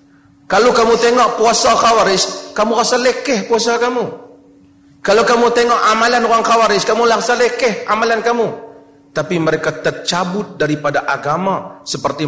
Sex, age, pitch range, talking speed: male, 40-59, 170-235 Hz, 130 wpm